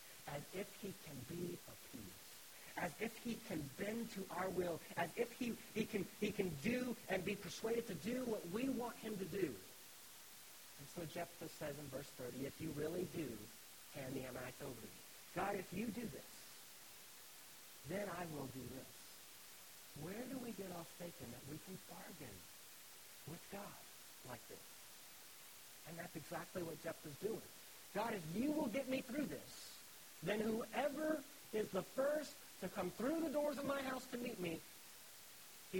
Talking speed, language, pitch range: 175 wpm, English, 170-245 Hz